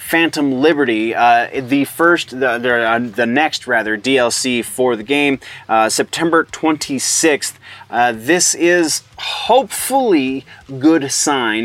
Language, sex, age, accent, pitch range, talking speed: English, male, 30-49, American, 115-140 Hz, 130 wpm